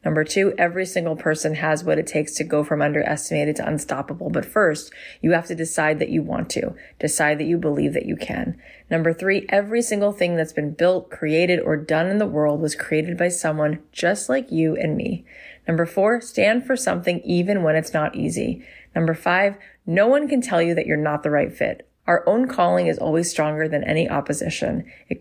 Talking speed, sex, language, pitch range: 210 wpm, female, English, 155-190 Hz